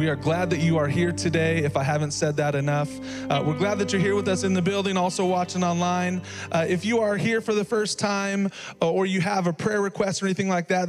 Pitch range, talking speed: 160-190 Hz, 260 wpm